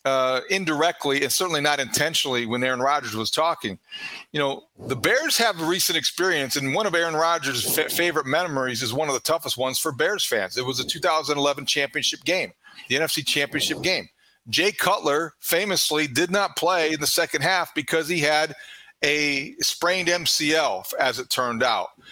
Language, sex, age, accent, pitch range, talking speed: English, male, 40-59, American, 140-185 Hz, 180 wpm